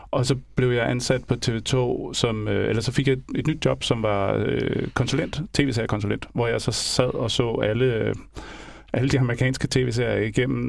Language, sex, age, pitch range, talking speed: Danish, male, 30-49, 110-130 Hz, 195 wpm